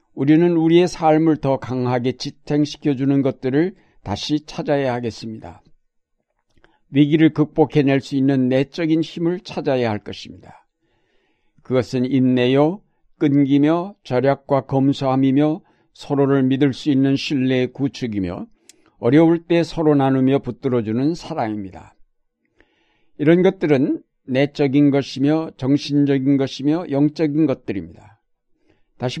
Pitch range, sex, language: 125-155 Hz, male, Korean